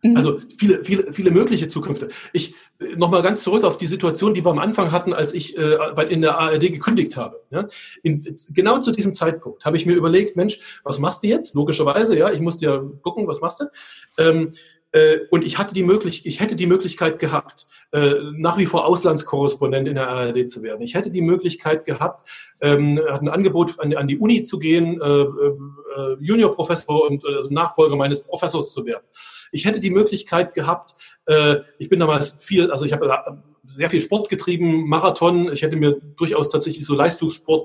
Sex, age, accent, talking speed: male, 30-49, German, 175 wpm